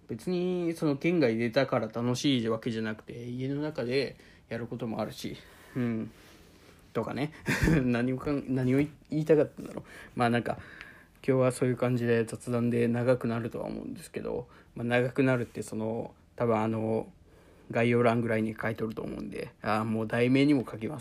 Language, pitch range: Japanese, 115-140 Hz